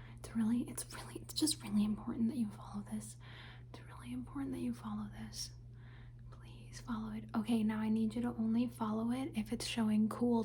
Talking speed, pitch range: 195 wpm, 120-195 Hz